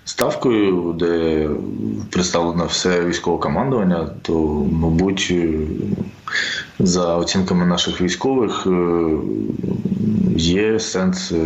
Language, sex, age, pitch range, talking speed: Ukrainian, male, 20-39, 85-100 Hz, 75 wpm